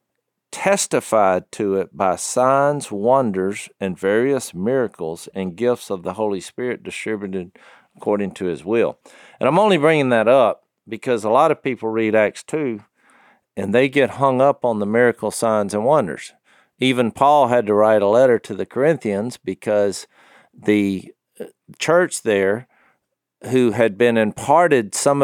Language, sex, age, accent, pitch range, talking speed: English, male, 50-69, American, 100-130 Hz, 150 wpm